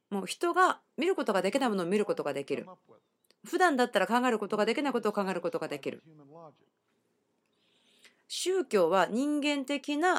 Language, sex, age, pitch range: Japanese, female, 40-59, 175-245 Hz